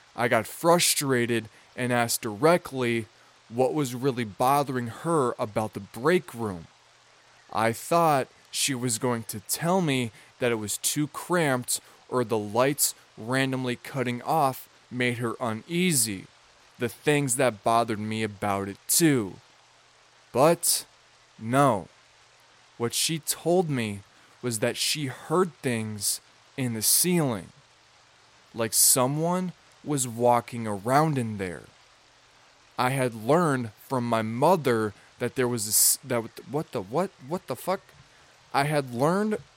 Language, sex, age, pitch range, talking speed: English, male, 20-39, 115-155 Hz, 130 wpm